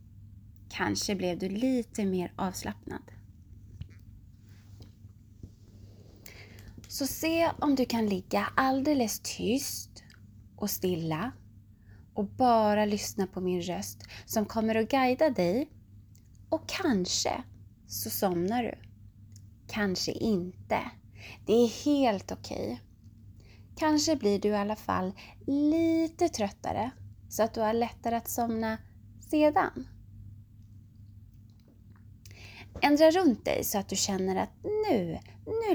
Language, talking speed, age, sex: Swedish, 105 wpm, 20-39, female